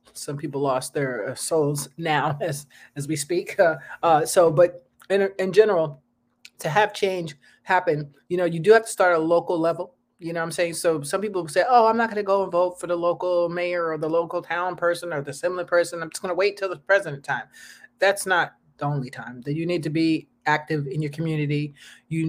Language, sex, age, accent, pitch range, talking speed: English, male, 30-49, American, 150-180 Hz, 230 wpm